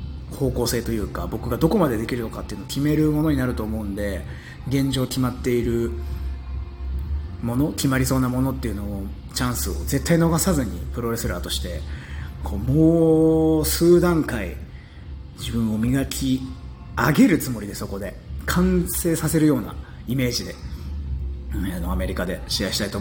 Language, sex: Japanese, male